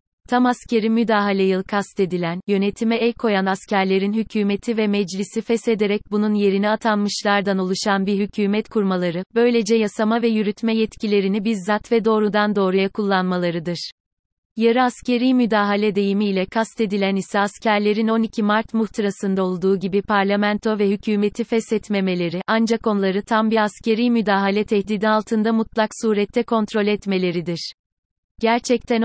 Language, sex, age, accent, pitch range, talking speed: Turkish, female, 30-49, native, 195-225 Hz, 125 wpm